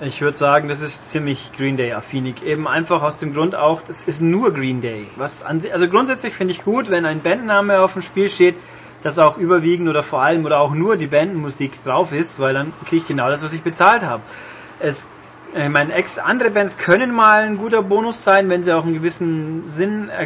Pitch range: 145-185 Hz